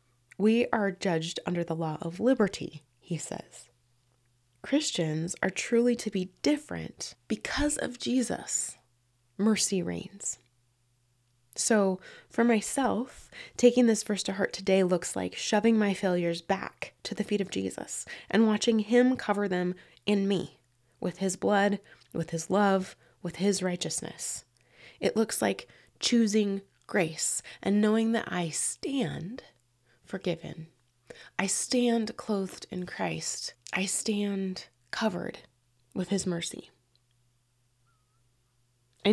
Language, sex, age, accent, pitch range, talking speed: English, female, 20-39, American, 155-210 Hz, 125 wpm